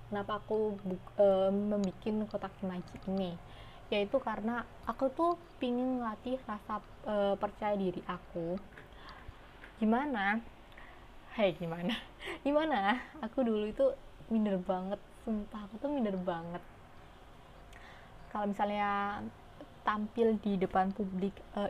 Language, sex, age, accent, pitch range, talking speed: Indonesian, female, 20-39, native, 190-225 Hz, 110 wpm